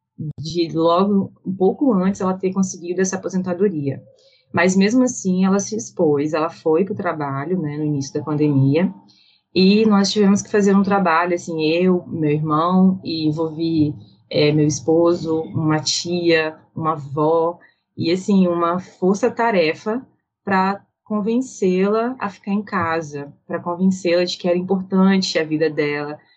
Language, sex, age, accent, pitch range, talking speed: Portuguese, female, 20-39, Brazilian, 155-195 Hz, 150 wpm